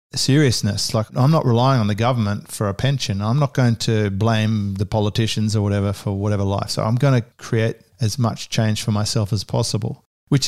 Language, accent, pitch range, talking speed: English, Australian, 110-130 Hz, 205 wpm